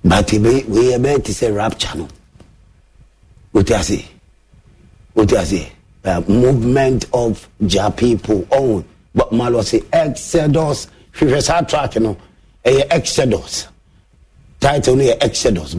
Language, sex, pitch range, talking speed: English, male, 105-155 Hz, 95 wpm